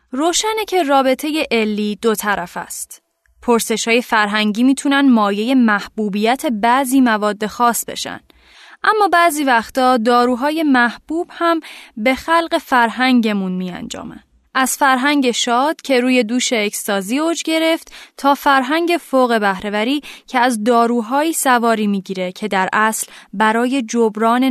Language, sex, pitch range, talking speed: Persian, female, 210-275 Hz, 120 wpm